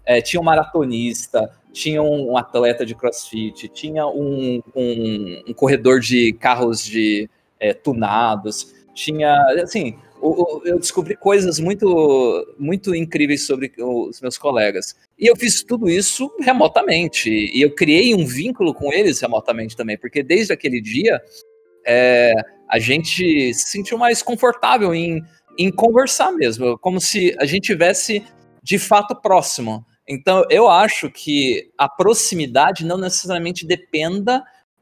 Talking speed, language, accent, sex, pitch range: 130 wpm, Portuguese, Brazilian, male, 125-200 Hz